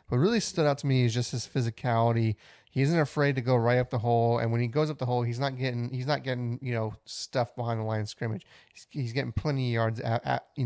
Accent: American